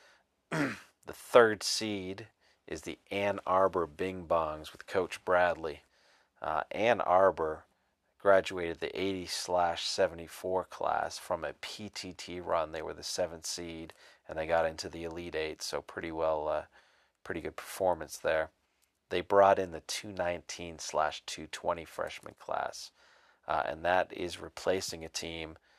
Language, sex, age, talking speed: English, male, 40-59, 135 wpm